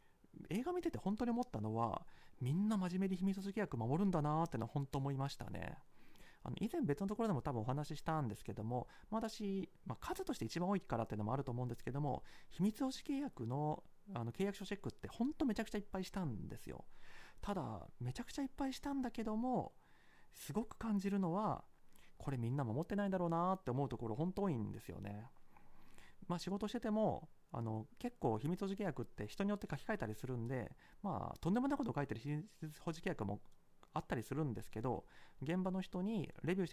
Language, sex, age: Japanese, male, 40-59